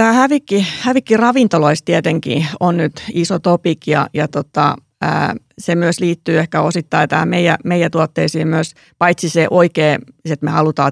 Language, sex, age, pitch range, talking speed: Finnish, female, 30-49, 150-180 Hz, 155 wpm